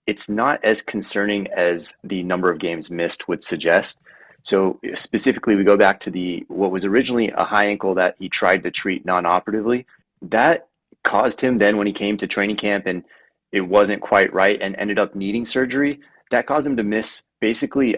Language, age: English, 30-49